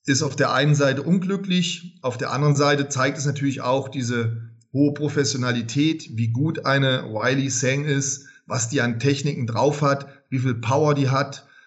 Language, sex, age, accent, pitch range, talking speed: German, male, 40-59, German, 115-145 Hz, 170 wpm